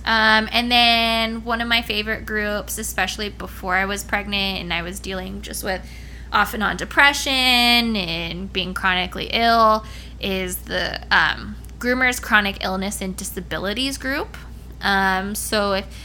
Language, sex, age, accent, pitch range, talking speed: English, female, 20-39, American, 180-225 Hz, 145 wpm